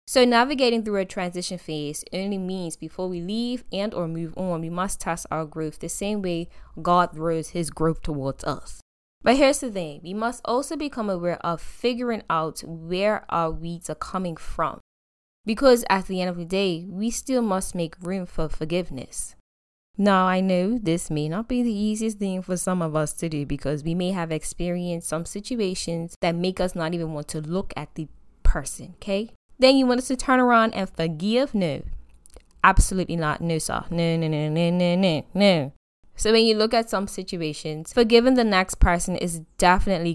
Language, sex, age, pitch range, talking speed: English, female, 10-29, 165-215 Hz, 195 wpm